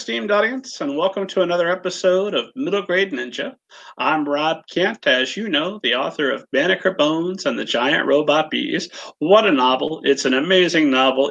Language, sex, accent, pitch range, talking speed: English, male, American, 145-230 Hz, 180 wpm